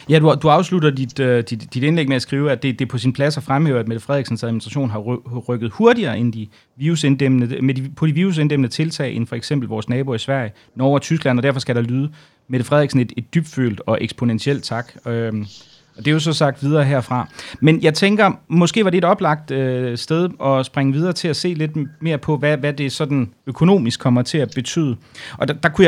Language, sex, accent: Danish, male, native